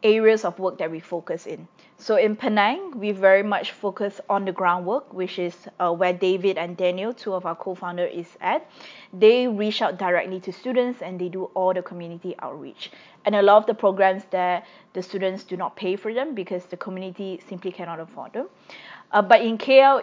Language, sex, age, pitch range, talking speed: English, female, 20-39, 185-230 Hz, 205 wpm